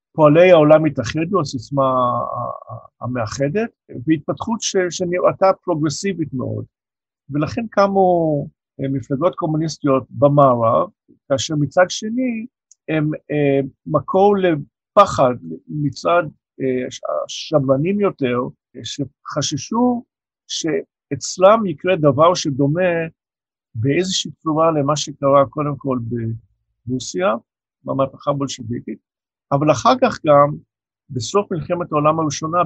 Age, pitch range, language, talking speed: 50-69, 130-170 Hz, Hebrew, 85 wpm